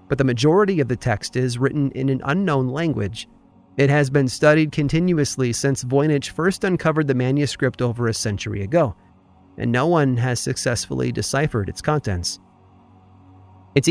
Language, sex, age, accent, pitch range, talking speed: English, male, 30-49, American, 105-150 Hz, 155 wpm